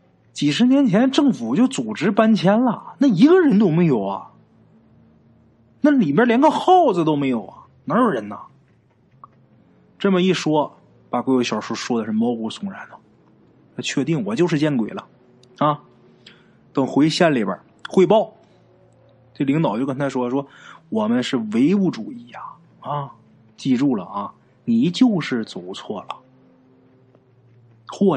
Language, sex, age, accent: Chinese, male, 20-39, native